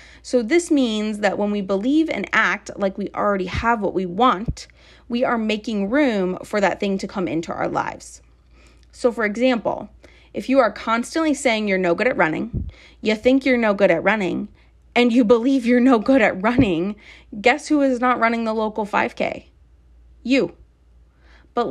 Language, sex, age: English, female, 30-49